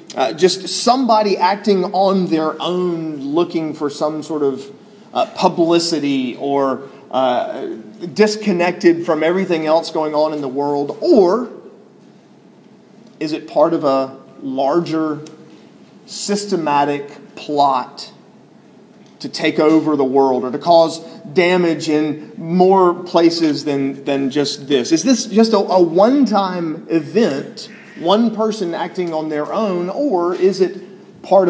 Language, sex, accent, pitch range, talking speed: English, male, American, 155-215 Hz, 130 wpm